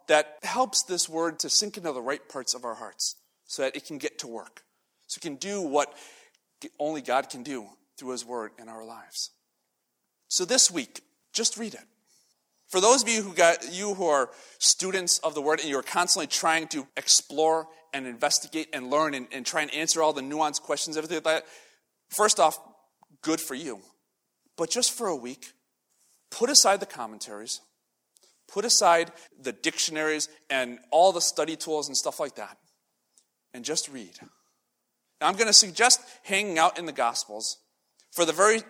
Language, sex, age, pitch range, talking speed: English, male, 30-49, 135-185 Hz, 185 wpm